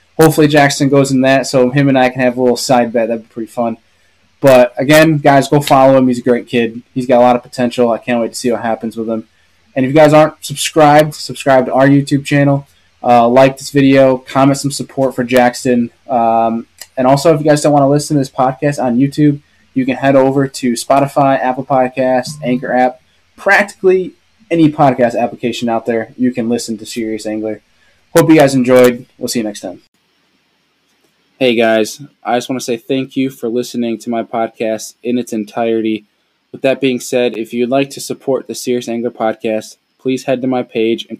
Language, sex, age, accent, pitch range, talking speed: English, male, 20-39, American, 115-135 Hz, 215 wpm